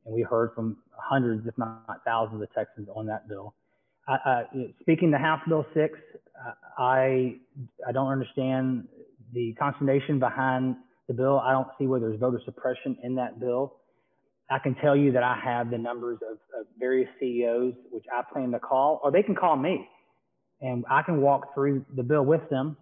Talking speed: 185 wpm